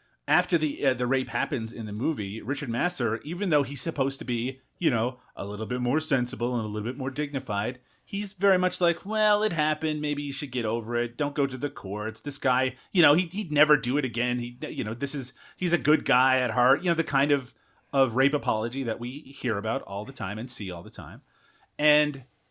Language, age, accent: English, 30-49, American